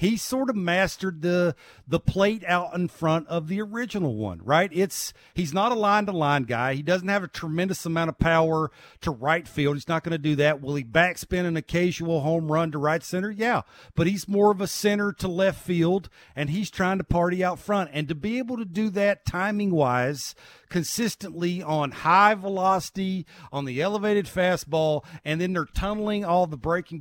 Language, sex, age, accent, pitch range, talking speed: English, male, 50-69, American, 155-195 Hz, 195 wpm